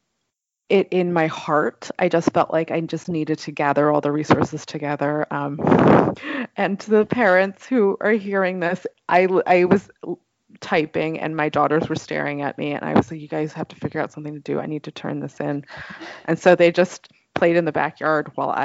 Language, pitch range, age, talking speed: English, 150-185 Hz, 20-39, 210 wpm